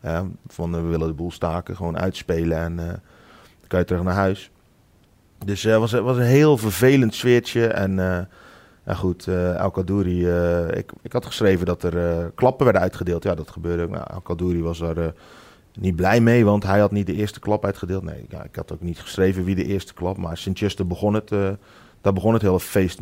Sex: male